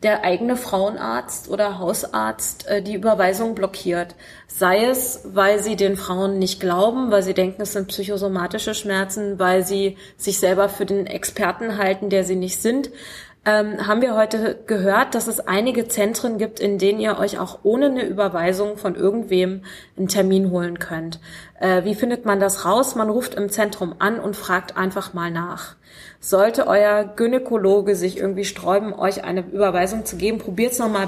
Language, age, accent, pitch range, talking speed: German, 30-49, German, 190-215 Hz, 175 wpm